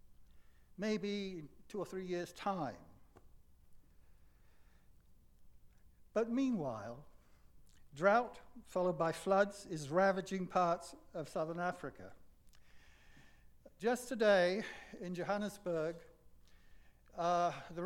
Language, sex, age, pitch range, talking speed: English, male, 60-79, 120-185 Hz, 80 wpm